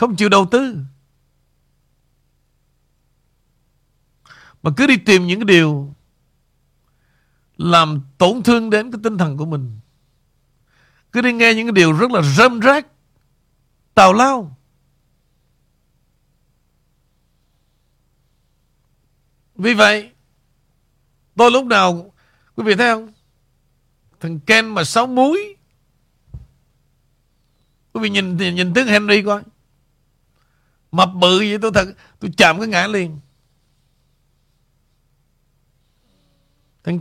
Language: Vietnamese